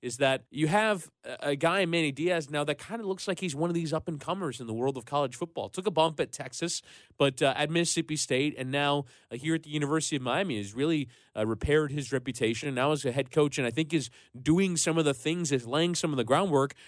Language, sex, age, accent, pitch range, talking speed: English, male, 20-39, American, 125-160 Hz, 255 wpm